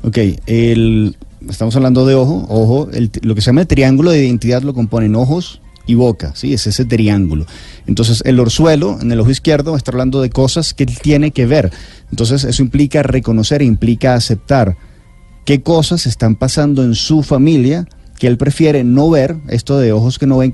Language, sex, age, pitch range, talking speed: Spanish, male, 30-49, 110-140 Hz, 190 wpm